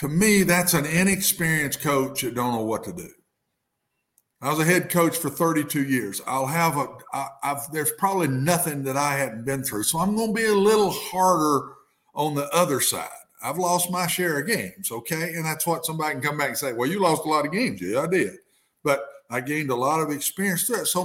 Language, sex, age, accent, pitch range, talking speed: English, male, 50-69, American, 140-195 Hz, 225 wpm